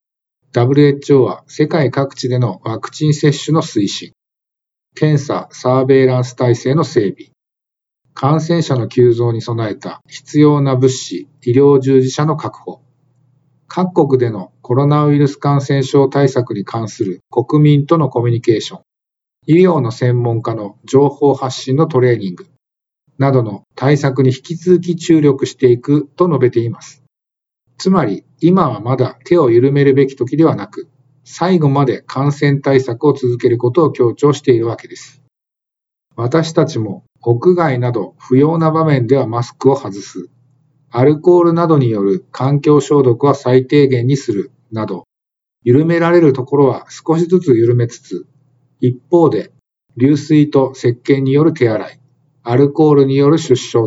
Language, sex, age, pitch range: Japanese, male, 50-69, 125-150 Hz